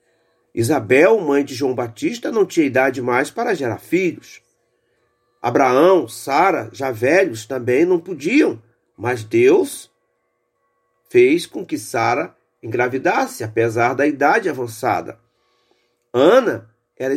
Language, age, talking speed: Portuguese, 40-59, 110 wpm